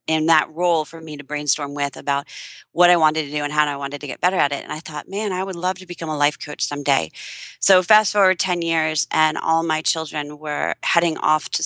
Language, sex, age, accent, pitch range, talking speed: English, female, 30-49, American, 160-185 Hz, 250 wpm